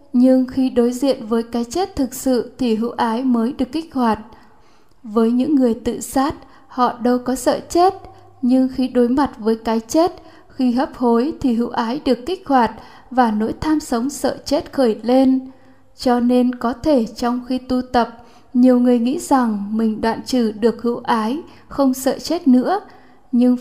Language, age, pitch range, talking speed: Vietnamese, 10-29, 230-265 Hz, 185 wpm